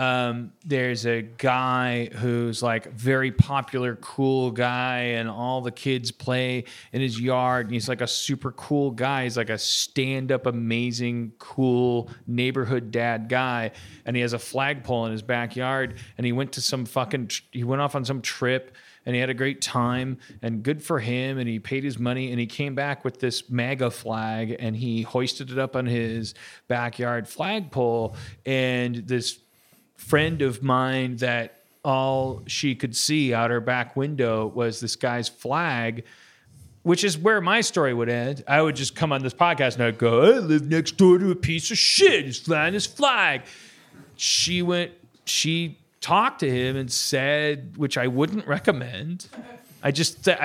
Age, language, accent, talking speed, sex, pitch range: 40-59, English, American, 175 wpm, male, 120-145 Hz